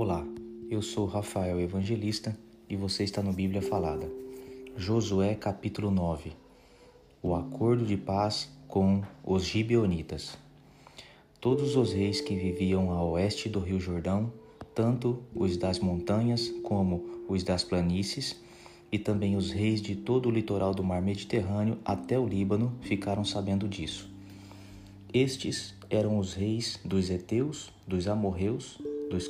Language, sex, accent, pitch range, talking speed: Portuguese, male, Brazilian, 95-115 Hz, 135 wpm